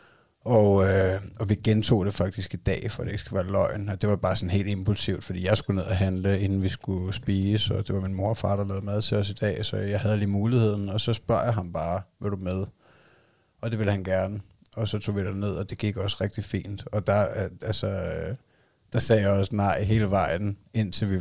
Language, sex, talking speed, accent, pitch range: Danish, male, 250 wpm, native, 95-110 Hz